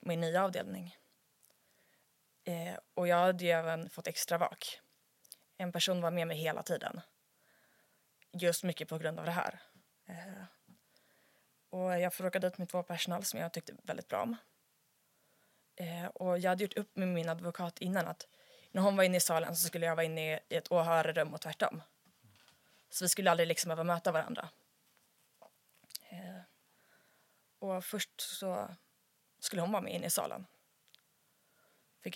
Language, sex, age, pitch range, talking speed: Swedish, female, 20-39, 165-185 Hz, 165 wpm